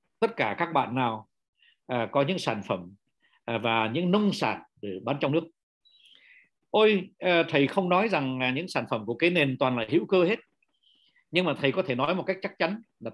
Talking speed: 200 wpm